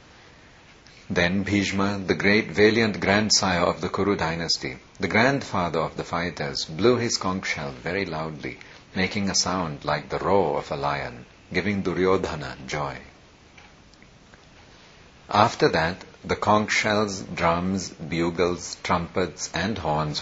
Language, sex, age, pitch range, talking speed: Hindi, male, 50-69, 80-100 Hz, 130 wpm